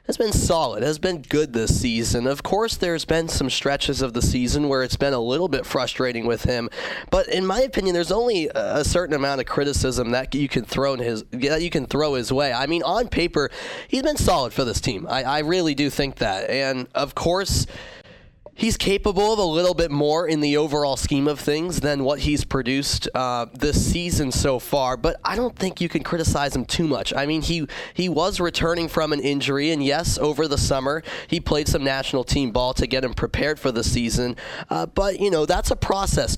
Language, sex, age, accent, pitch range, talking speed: English, male, 20-39, American, 130-170 Hz, 220 wpm